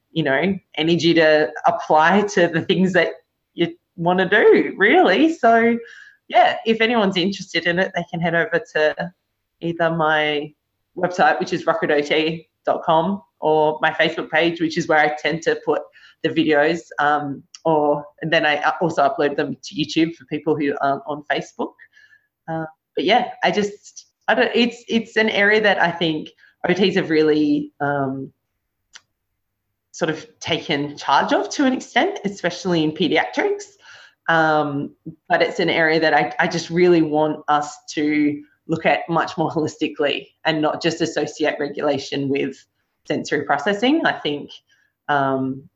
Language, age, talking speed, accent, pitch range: English, 20-39, 155 wpm, Australian, 150-190 Hz